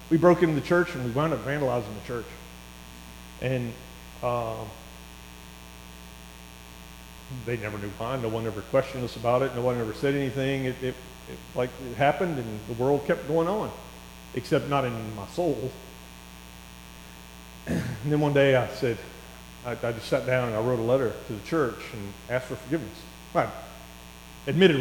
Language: English